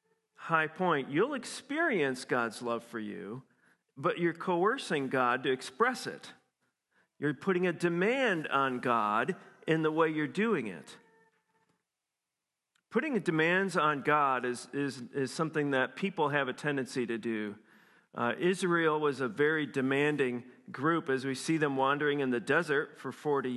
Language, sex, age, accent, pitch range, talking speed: English, male, 40-59, American, 135-185 Hz, 150 wpm